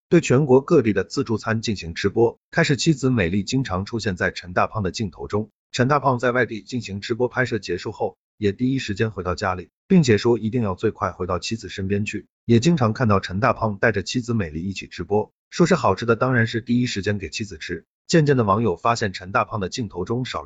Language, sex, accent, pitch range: Chinese, male, native, 95-125 Hz